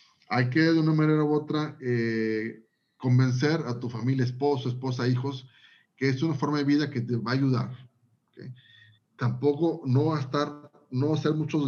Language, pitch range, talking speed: Spanish, 120-145 Hz, 170 wpm